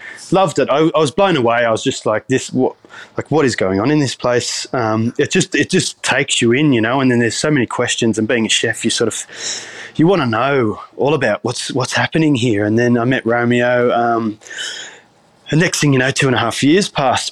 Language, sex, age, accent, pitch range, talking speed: English, male, 20-39, Australian, 115-140 Hz, 245 wpm